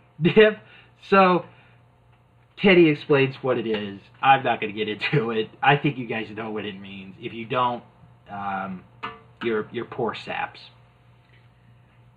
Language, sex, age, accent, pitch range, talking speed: English, male, 30-49, American, 120-190 Hz, 145 wpm